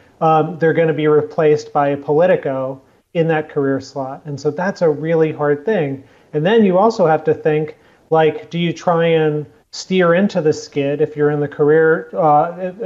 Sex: male